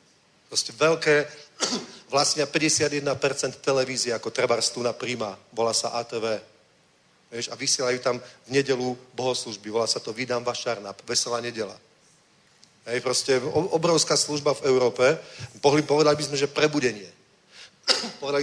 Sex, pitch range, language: male, 120-150 Hz, Czech